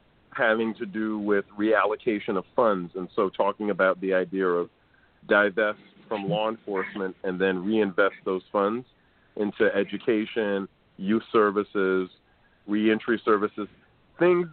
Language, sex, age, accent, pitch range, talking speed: English, male, 40-59, American, 95-115 Hz, 125 wpm